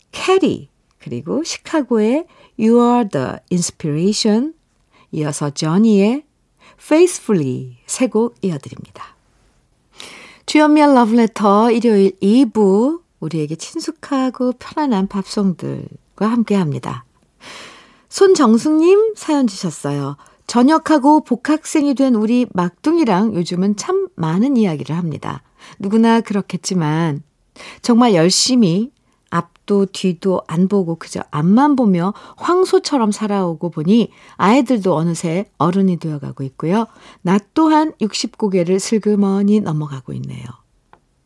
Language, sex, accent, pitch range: Korean, female, native, 175-255 Hz